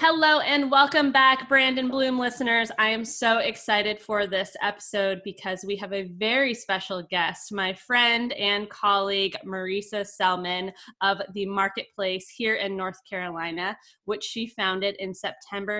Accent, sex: American, female